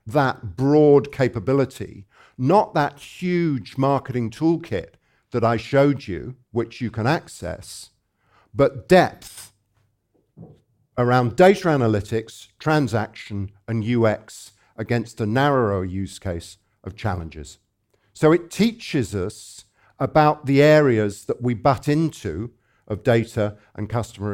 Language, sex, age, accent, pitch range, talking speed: English, male, 50-69, British, 105-135 Hz, 115 wpm